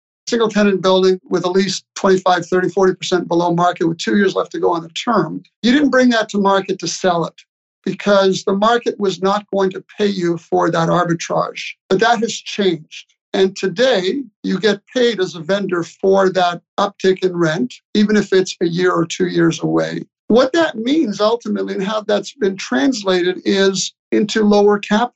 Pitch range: 185-220 Hz